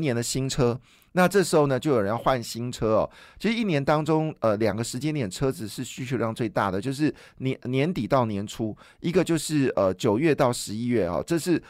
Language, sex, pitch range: Chinese, male, 115-155 Hz